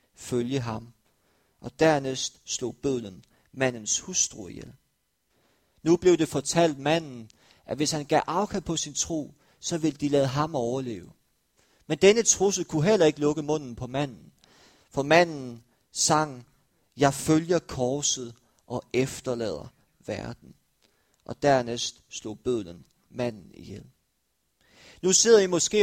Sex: male